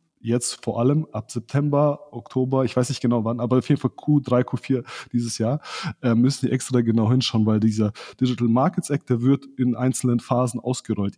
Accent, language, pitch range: German, German, 115-140 Hz